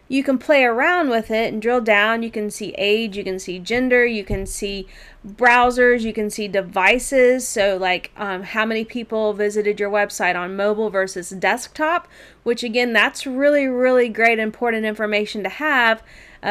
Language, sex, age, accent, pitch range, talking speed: English, female, 30-49, American, 205-255 Hz, 180 wpm